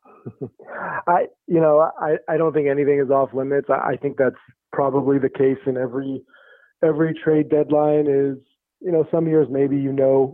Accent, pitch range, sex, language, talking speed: American, 125-145 Hz, male, English, 180 wpm